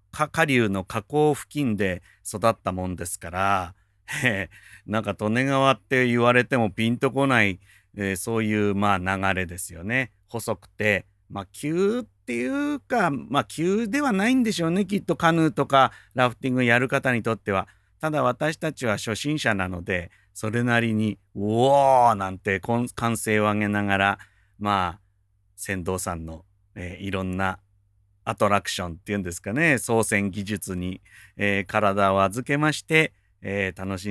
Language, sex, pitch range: Japanese, male, 100-130 Hz